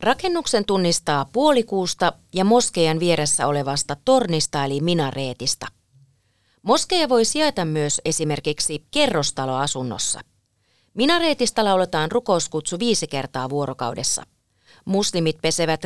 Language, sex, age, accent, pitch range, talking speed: Finnish, female, 30-49, native, 140-210 Hz, 90 wpm